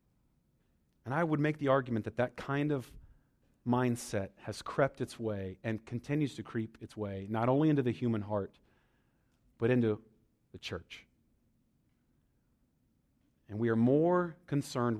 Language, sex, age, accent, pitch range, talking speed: English, male, 40-59, American, 115-155 Hz, 145 wpm